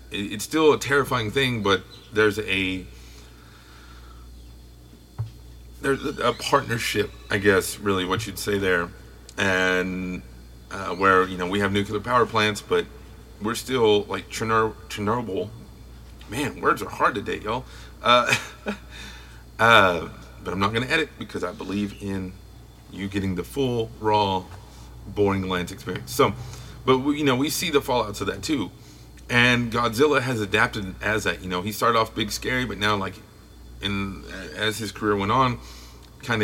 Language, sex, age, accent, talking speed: English, male, 30-49, American, 155 wpm